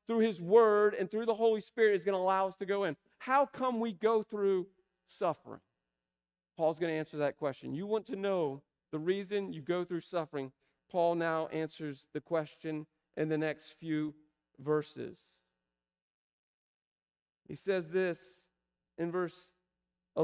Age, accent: 40-59, American